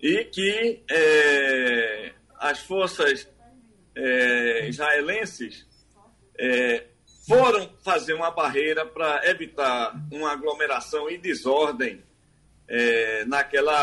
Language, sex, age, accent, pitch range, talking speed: Portuguese, male, 50-69, Brazilian, 145-230 Hz, 70 wpm